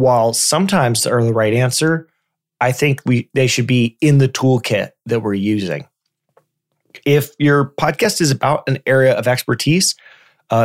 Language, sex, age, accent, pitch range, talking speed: English, male, 30-49, American, 115-145 Hz, 160 wpm